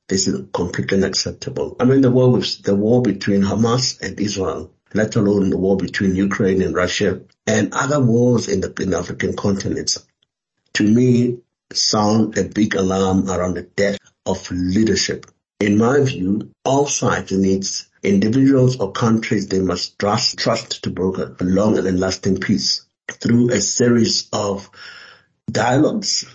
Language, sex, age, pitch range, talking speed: English, male, 60-79, 95-115 Hz, 155 wpm